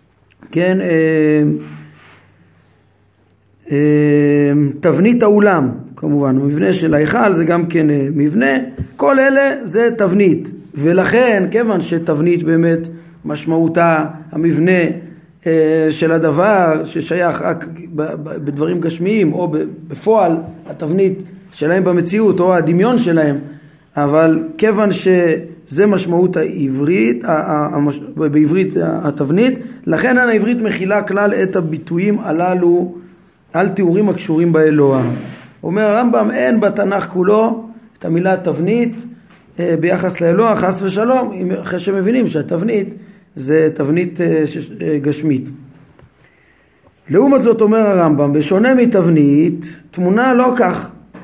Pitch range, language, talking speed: 155-200 Hz, Hebrew, 95 wpm